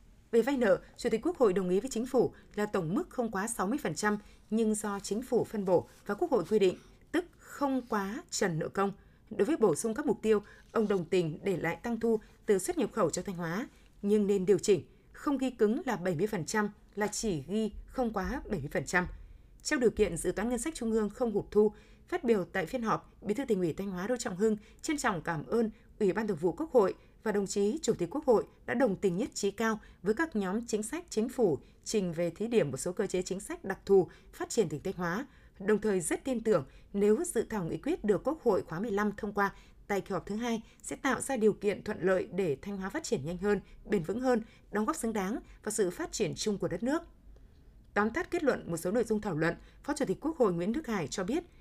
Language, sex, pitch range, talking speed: Vietnamese, female, 195-235 Hz, 250 wpm